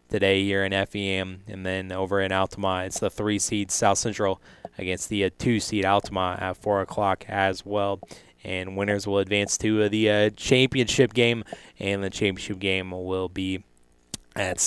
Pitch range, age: 90-100 Hz, 20-39